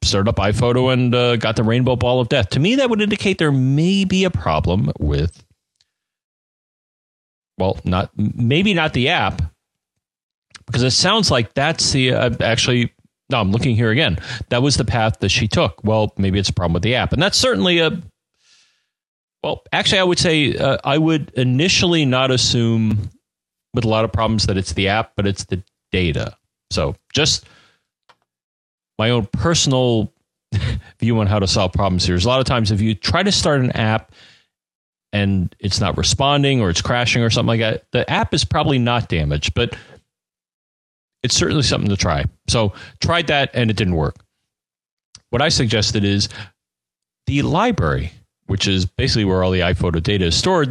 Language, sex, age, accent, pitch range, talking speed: English, male, 30-49, American, 95-135 Hz, 180 wpm